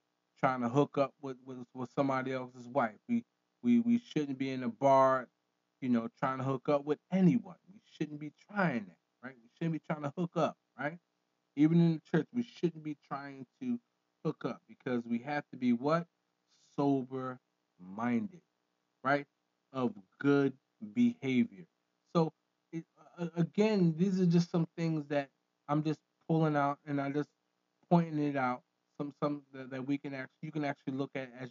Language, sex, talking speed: English, male, 175 wpm